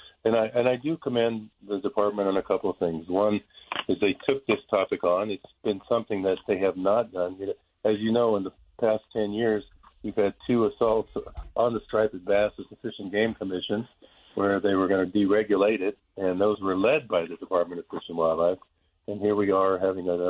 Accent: American